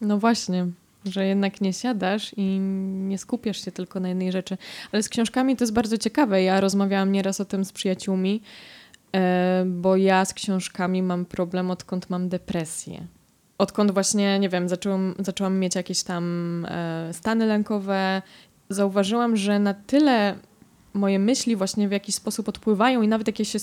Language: Polish